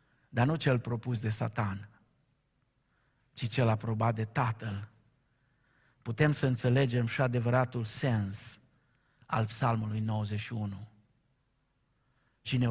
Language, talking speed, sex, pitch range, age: Romanian, 100 wpm, male, 110-135 Hz, 50-69